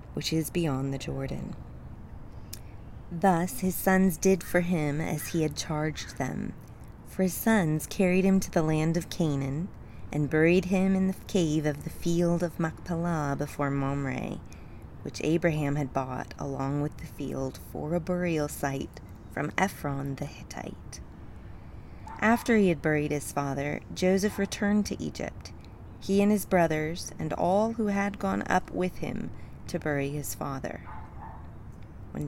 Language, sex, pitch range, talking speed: English, female, 140-180 Hz, 150 wpm